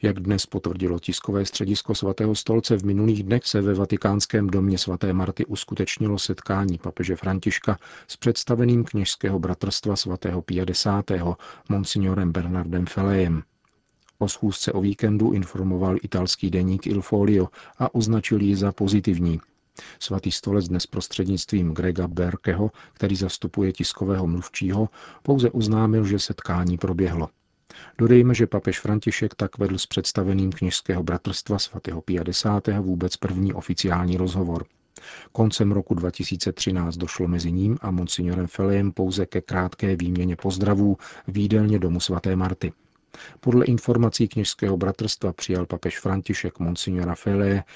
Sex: male